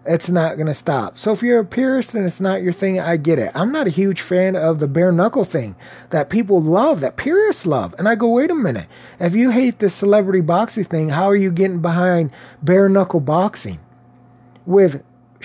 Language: English